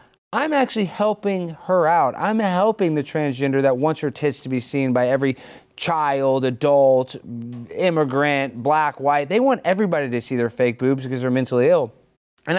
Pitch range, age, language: 140-230 Hz, 30-49, English